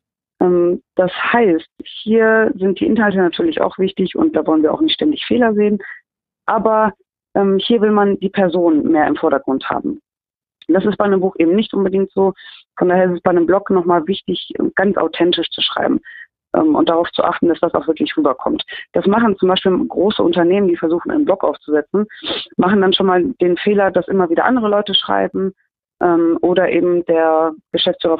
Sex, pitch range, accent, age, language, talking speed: female, 170-215 Hz, German, 30-49, German, 190 wpm